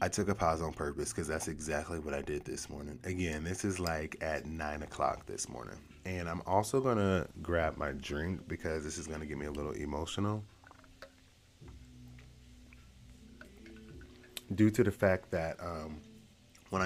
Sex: male